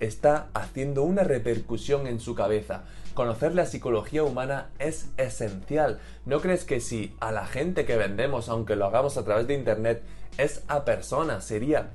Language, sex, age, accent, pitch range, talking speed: Spanish, male, 20-39, Spanish, 115-145 Hz, 165 wpm